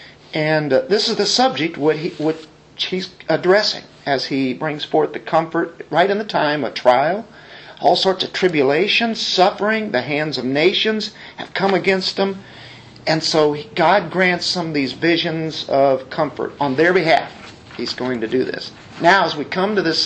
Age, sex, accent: 50-69, male, American